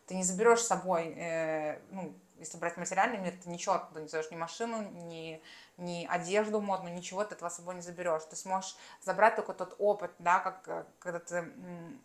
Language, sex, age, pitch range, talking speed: Russian, female, 20-39, 175-200 Hz, 200 wpm